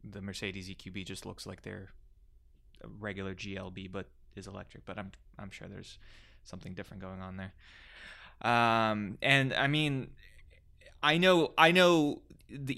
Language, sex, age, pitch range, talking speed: English, male, 20-39, 90-115 Hz, 145 wpm